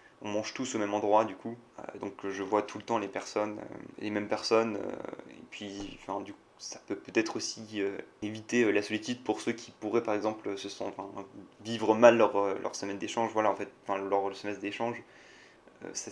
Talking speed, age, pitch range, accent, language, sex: 220 wpm, 20-39, 100-120 Hz, French, French, male